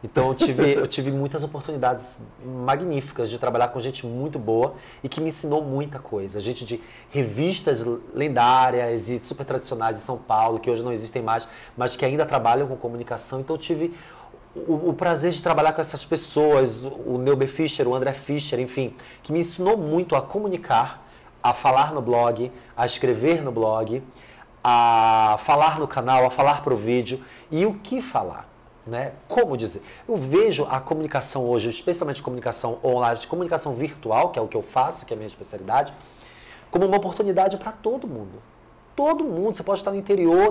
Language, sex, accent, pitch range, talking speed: Portuguese, male, Brazilian, 120-160 Hz, 185 wpm